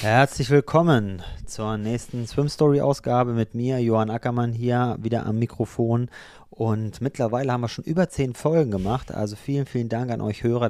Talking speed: 165 wpm